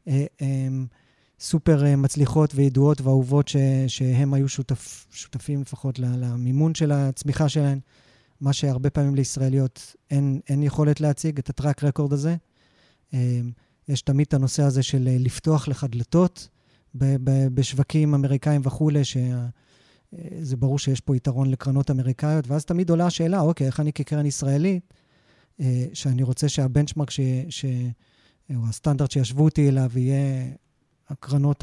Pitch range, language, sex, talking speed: 130-150 Hz, Hebrew, male, 125 wpm